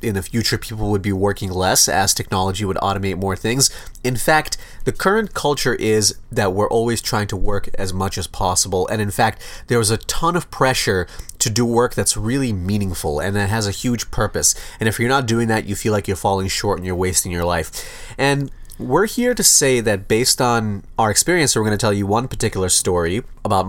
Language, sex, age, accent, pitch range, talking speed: English, male, 30-49, American, 100-125 Hz, 220 wpm